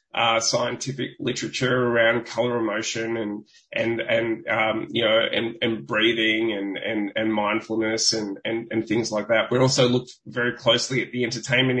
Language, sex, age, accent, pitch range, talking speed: English, male, 20-39, Australian, 115-135 Hz, 170 wpm